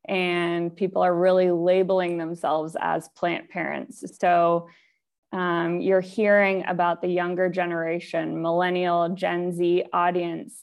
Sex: female